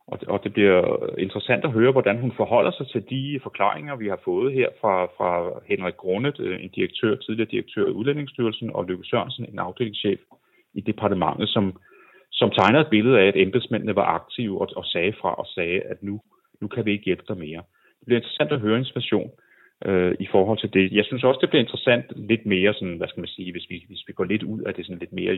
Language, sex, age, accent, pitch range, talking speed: English, male, 30-49, Danish, 100-125 Hz, 225 wpm